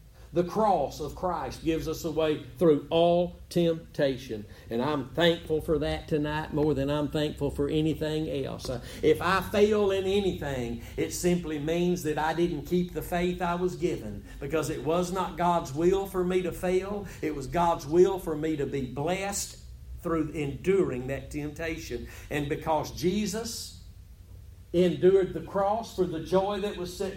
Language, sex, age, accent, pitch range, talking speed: English, male, 50-69, American, 145-185 Hz, 170 wpm